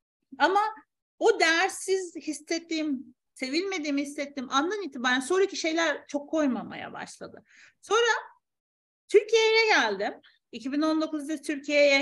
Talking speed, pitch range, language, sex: 90 wpm, 230-325 Hz, Turkish, female